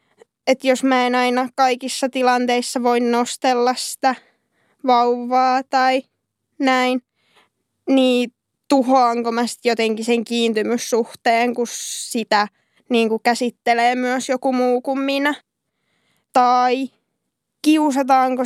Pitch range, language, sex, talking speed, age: 245-275 Hz, Finnish, female, 100 wpm, 20-39